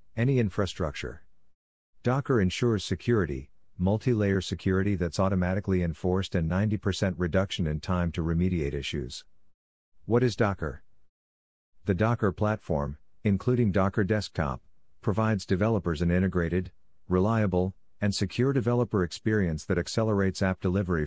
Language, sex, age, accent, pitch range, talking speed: English, male, 50-69, American, 85-100 Hz, 115 wpm